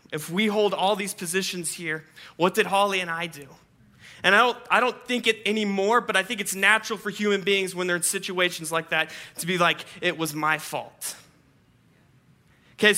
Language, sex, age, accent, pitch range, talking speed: English, male, 30-49, American, 170-210 Hz, 200 wpm